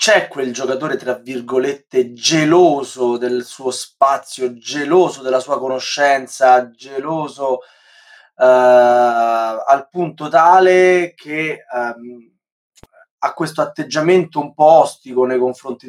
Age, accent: 20-39, native